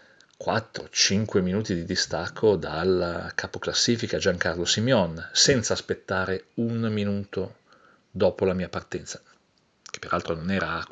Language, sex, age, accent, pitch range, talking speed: Italian, male, 40-59, native, 90-105 Hz, 110 wpm